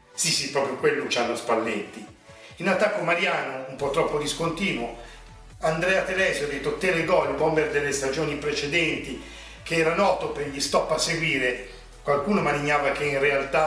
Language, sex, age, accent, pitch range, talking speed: Italian, male, 50-69, native, 140-165 Hz, 155 wpm